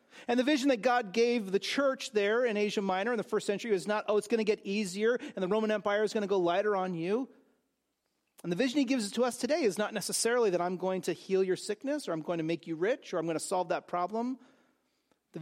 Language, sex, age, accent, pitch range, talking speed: English, male, 40-59, American, 170-235 Hz, 265 wpm